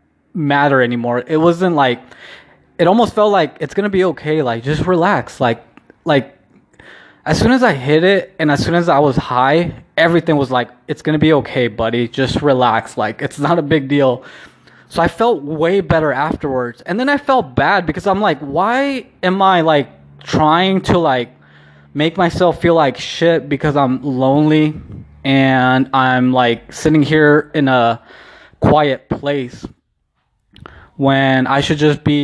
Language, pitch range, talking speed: English, 125-155 Hz, 170 wpm